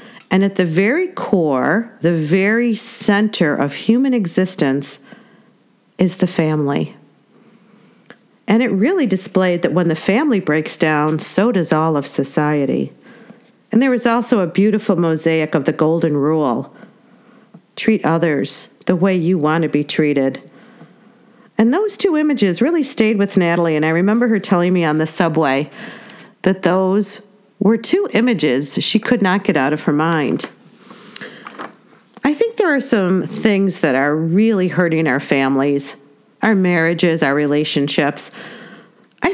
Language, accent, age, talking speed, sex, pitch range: English, American, 50-69, 145 wpm, female, 165-230 Hz